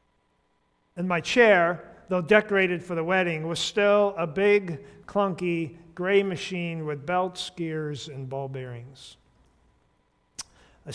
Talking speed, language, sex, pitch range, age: 120 wpm, English, male, 150-205 Hz, 50-69